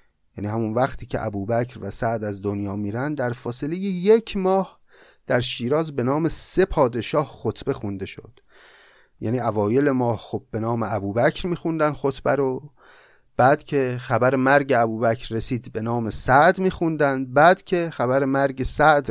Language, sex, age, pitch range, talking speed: Persian, male, 30-49, 115-155 Hz, 150 wpm